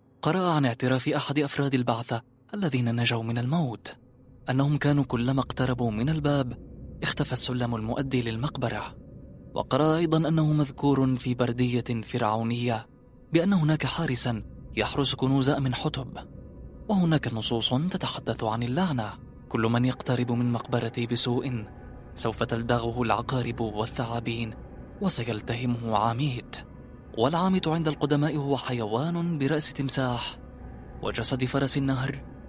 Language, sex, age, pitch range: Arabic, male, 20-39, 115-135 Hz